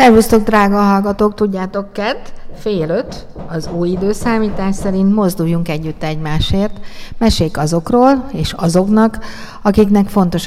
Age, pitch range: 50-69, 165-195 Hz